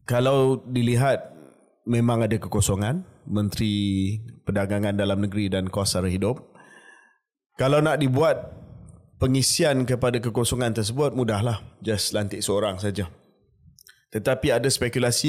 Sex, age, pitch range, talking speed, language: male, 20-39, 100-125 Hz, 105 wpm, Malay